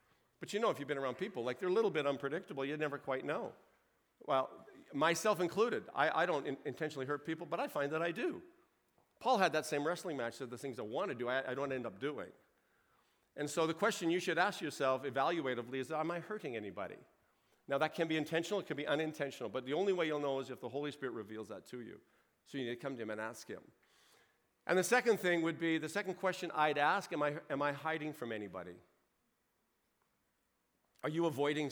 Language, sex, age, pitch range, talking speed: English, male, 50-69, 135-170 Hz, 235 wpm